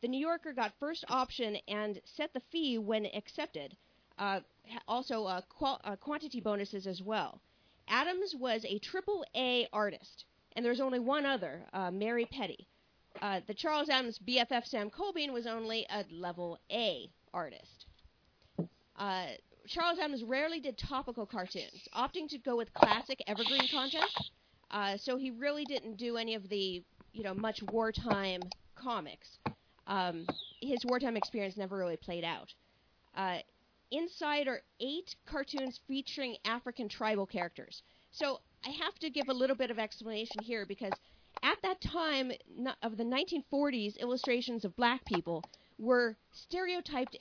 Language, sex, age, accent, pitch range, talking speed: English, female, 40-59, American, 210-275 Hz, 145 wpm